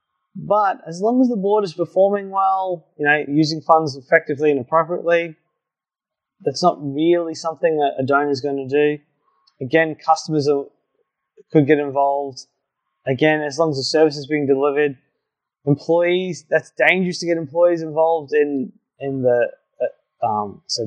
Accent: Australian